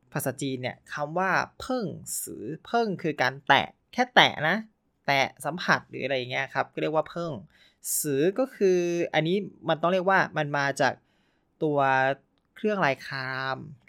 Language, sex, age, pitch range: Thai, male, 20-39, 140-180 Hz